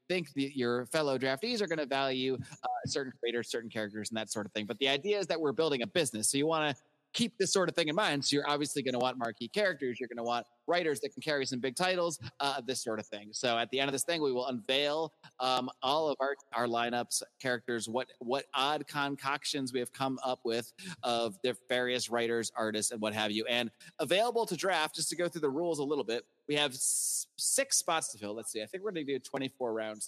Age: 30-49